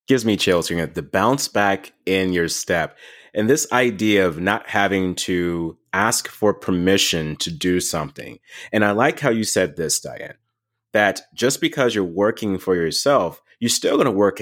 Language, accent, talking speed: English, American, 190 wpm